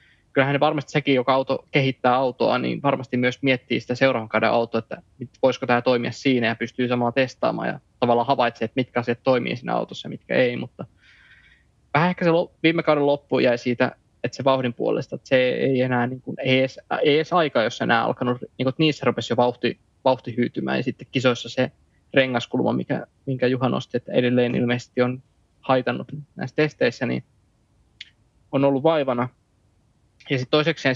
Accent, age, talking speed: native, 20-39, 175 wpm